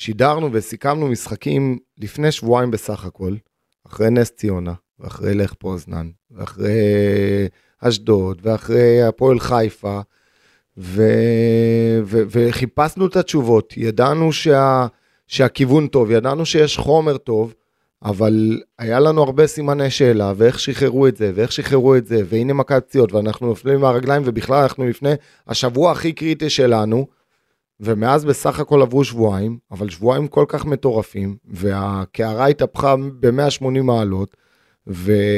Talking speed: 125 wpm